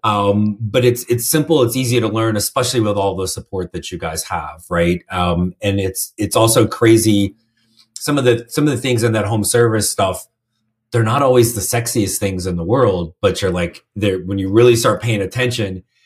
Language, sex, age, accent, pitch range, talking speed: English, male, 30-49, American, 100-120 Hz, 210 wpm